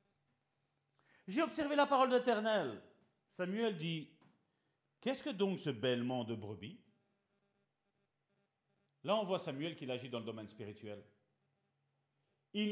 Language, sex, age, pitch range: French, male, 50-69, 110-165 Hz